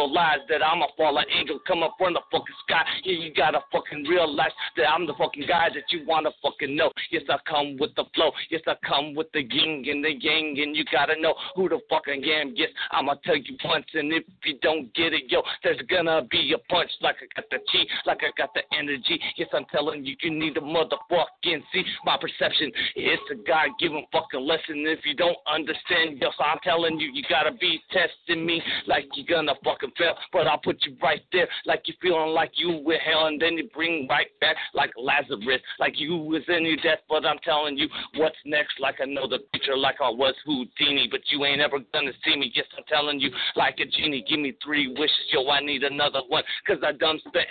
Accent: American